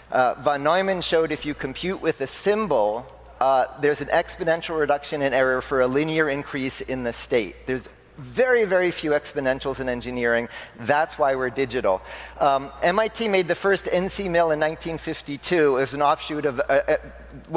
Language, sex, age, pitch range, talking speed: English, male, 40-59, 135-170 Hz, 170 wpm